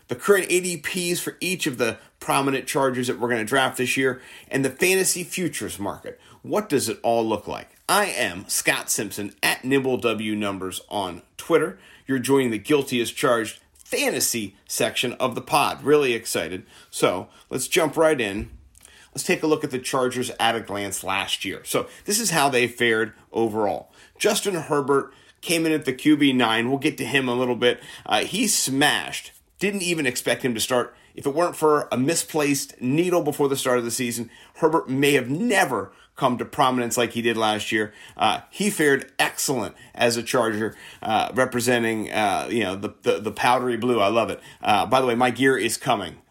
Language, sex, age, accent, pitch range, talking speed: English, male, 40-59, American, 120-150 Hz, 190 wpm